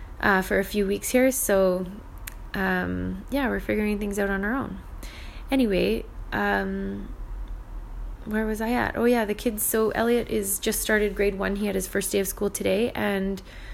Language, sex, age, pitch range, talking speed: English, female, 20-39, 170-205 Hz, 185 wpm